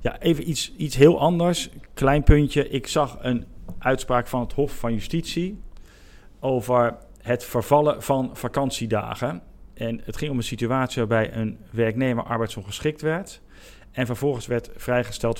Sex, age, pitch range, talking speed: male, 40-59, 110-130 Hz, 145 wpm